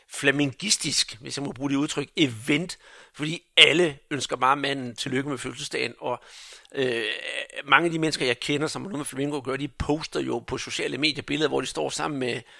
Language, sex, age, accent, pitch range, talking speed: Danish, male, 60-79, native, 140-165 Hz, 200 wpm